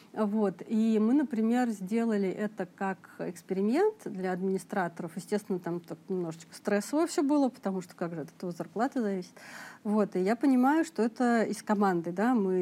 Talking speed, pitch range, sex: 160 wpm, 190-245 Hz, female